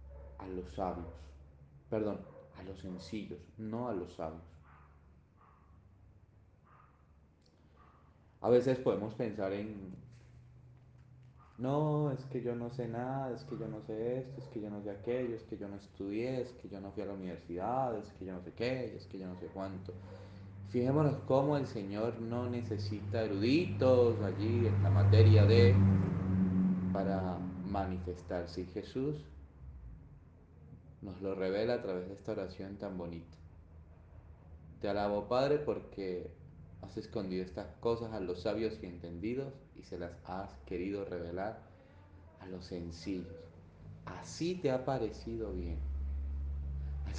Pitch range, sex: 80-110 Hz, male